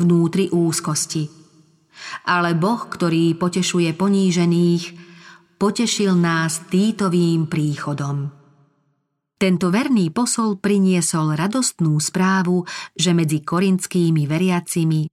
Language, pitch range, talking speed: Slovak, 155-190 Hz, 85 wpm